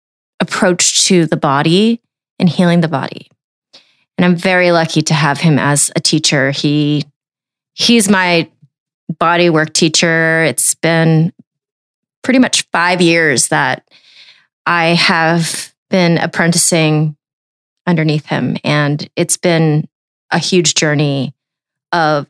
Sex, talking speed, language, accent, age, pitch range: female, 115 wpm, English, American, 30-49, 155-190 Hz